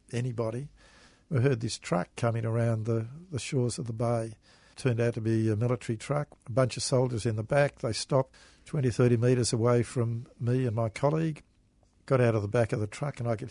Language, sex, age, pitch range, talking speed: English, male, 50-69, 115-130 Hz, 220 wpm